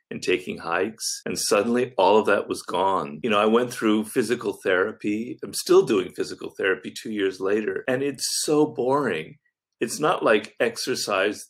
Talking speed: 170 wpm